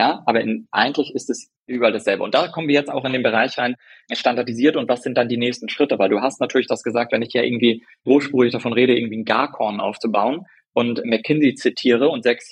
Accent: German